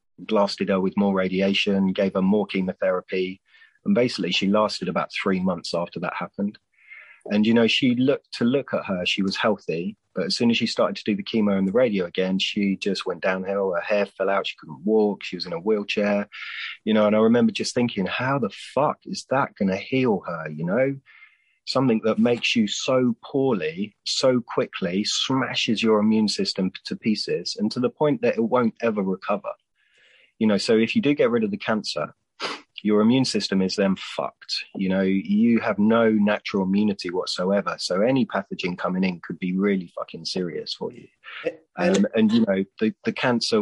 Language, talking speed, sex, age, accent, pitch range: English, 200 wpm, male, 30-49, British, 95-115 Hz